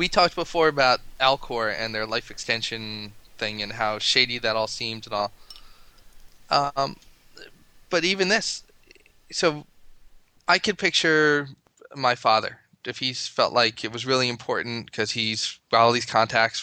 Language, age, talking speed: English, 20-39, 150 wpm